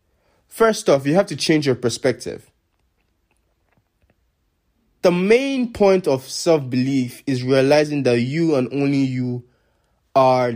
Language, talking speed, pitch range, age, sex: English, 120 wpm, 115-150 Hz, 20-39, male